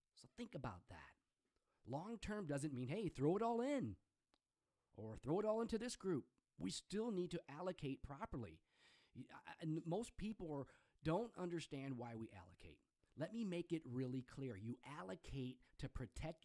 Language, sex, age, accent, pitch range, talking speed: English, male, 40-59, American, 125-180 Hz, 160 wpm